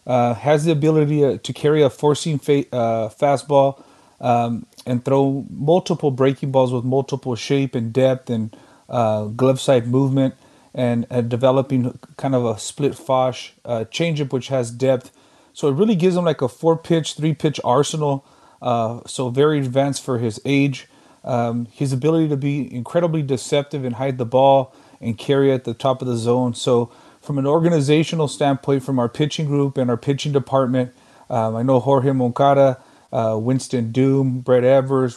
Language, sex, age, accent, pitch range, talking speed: English, male, 30-49, American, 120-140 Hz, 170 wpm